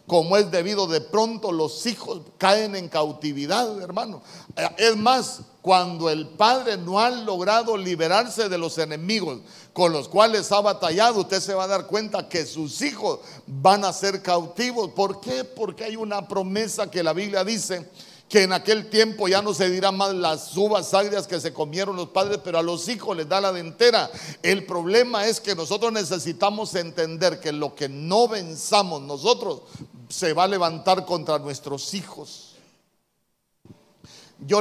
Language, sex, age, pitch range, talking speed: Spanish, male, 50-69, 170-215 Hz, 170 wpm